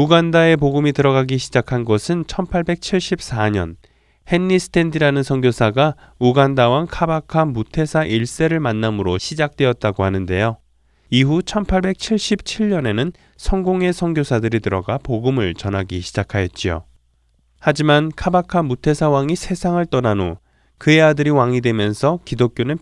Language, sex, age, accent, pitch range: Korean, male, 20-39, native, 100-160 Hz